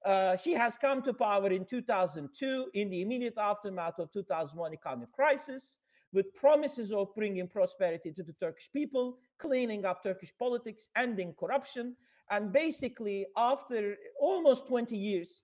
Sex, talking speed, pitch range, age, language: male, 145 wpm, 185-245 Hz, 50-69, Turkish